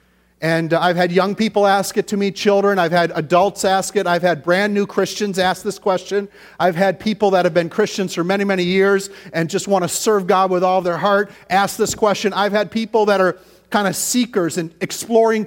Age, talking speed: 40-59, 220 wpm